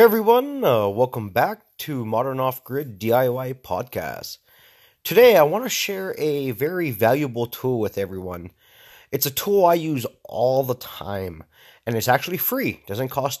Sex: male